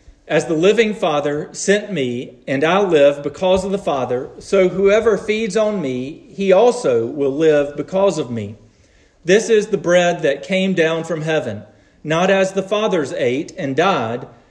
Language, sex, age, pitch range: English, male, 40-59, 135-195 Hz